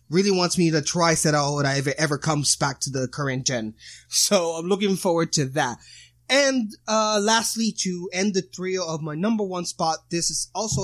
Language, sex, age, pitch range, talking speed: English, male, 20-39, 145-200 Hz, 205 wpm